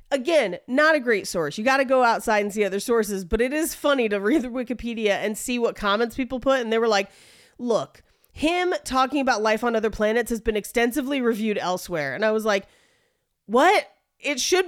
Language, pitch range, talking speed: English, 190-280 Hz, 215 wpm